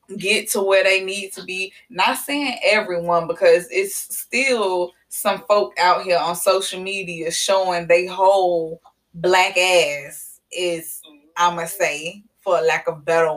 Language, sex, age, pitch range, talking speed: English, female, 20-39, 170-200 Hz, 155 wpm